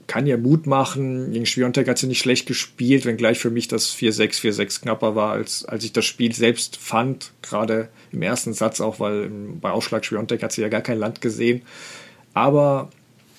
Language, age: German, 40-59